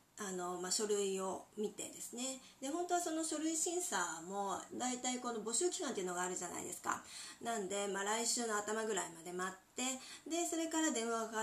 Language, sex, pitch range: Japanese, female, 185-260 Hz